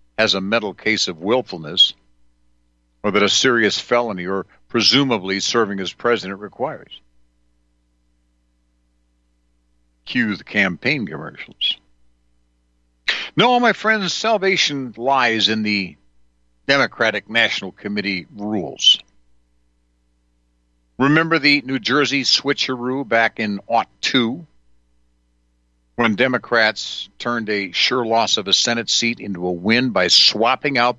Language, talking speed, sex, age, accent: English, 110 wpm, male, 60-79, American